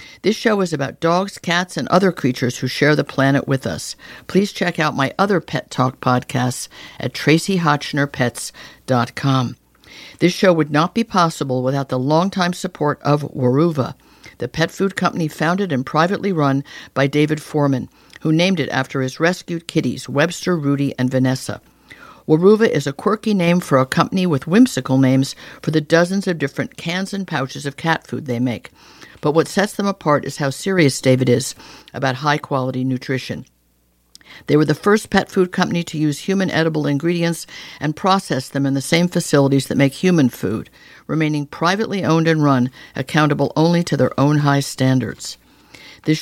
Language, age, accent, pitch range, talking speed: English, 60-79, American, 135-175 Hz, 170 wpm